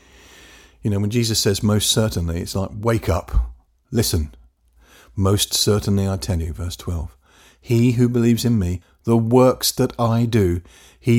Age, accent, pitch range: 50-69, British, 85-120 Hz